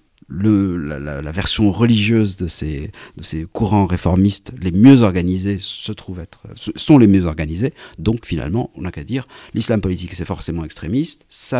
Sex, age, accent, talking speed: male, 50-69, French, 170 wpm